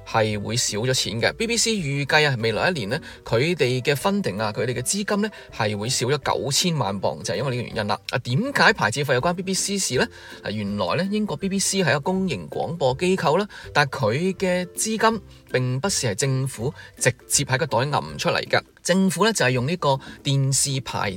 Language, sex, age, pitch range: Chinese, male, 20-39, 120-185 Hz